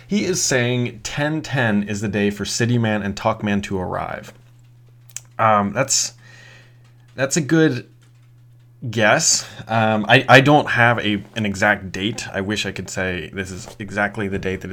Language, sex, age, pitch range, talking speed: English, male, 30-49, 105-125 Hz, 165 wpm